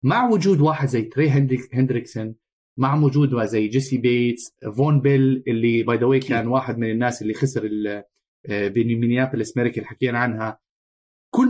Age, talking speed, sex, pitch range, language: 30-49, 140 wpm, male, 120-175 Hz, Arabic